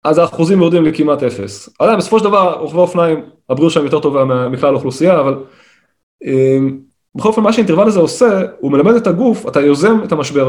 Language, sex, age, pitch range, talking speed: Hebrew, male, 20-39, 135-180 Hz, 175 wpm